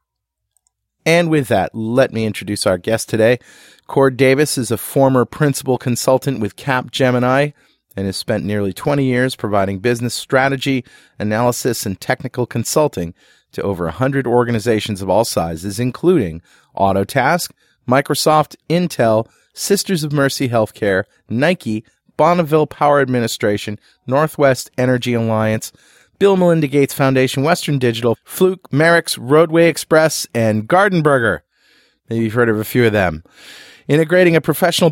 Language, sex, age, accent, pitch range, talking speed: English, male, 40-59, American, 115-155 Hz, 135 wpm